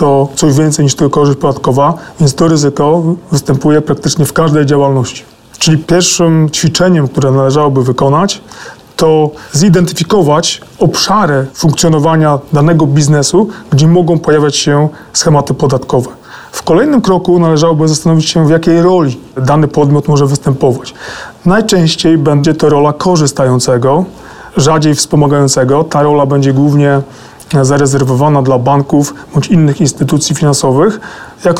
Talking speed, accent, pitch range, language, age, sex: 125 wpm, native, 140-165 Hz, Polish, 30-49, male